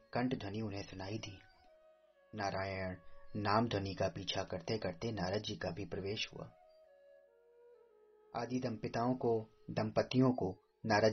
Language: Hindi